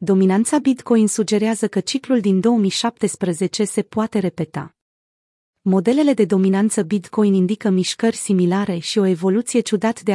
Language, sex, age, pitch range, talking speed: Romanian, female, 30-49, 180-220 Hz, 130 wpm